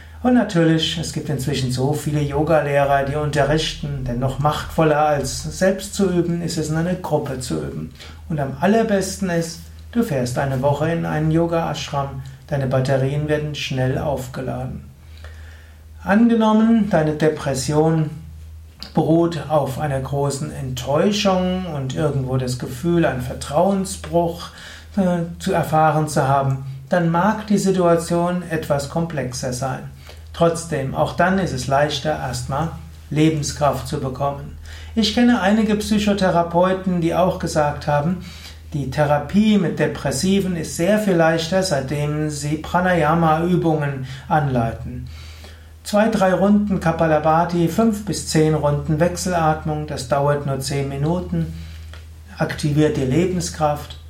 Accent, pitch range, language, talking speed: German, 135-170 Hz, German, 125 wpm